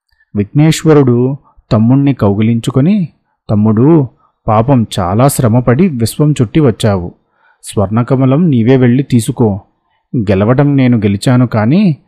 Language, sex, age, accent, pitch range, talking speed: Telugu, male, 30-49, native, 110-140 Hz, 90 wpm